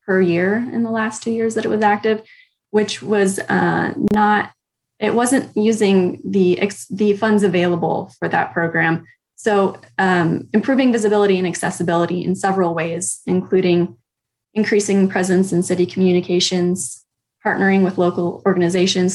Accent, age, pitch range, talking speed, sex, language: American, 10-29, 175-210 Hz, 140 wpm, female, English